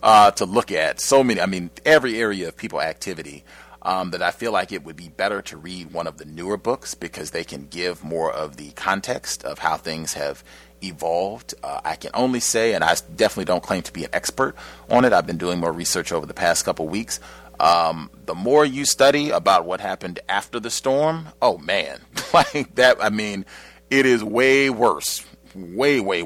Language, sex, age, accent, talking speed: English, male, 30-49, American, 210 wpm